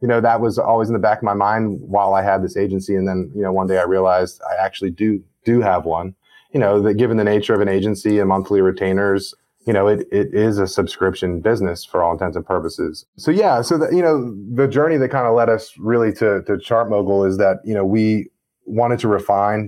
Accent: American